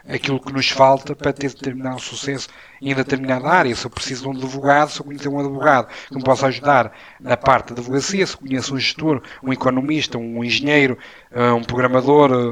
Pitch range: 130-165 Hz